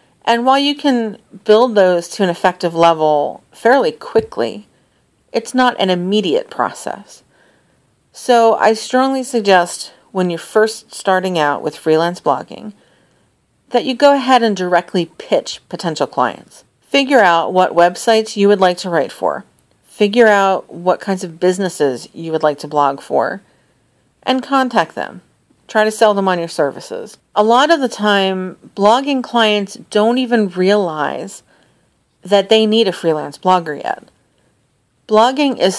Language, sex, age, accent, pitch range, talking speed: English, female, 40-59, American, 175-230 Hz, 150 wpm